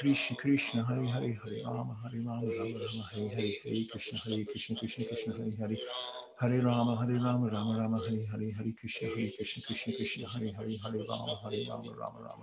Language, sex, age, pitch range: English, male, 50-69, 110-120 Hz